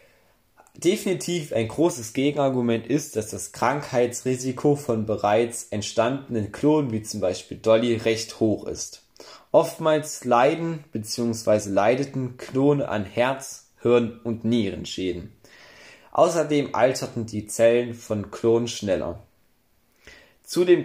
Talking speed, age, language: 105 wpm, 20-39, German